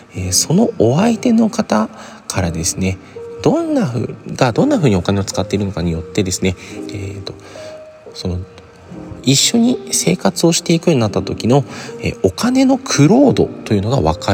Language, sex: Japanese, male